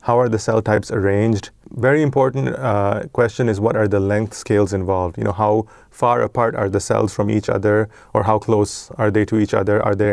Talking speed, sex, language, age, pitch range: 225 wpm, male, English, 30-49, 105-120 Hz